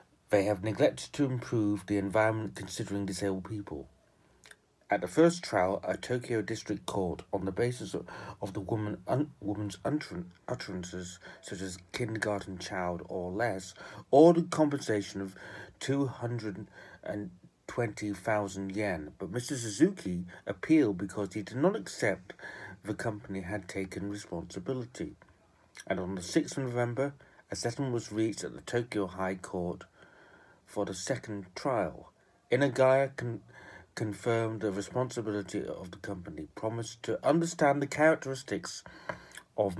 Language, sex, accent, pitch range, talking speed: English, male, British, 100-125 Hz, 130 wpm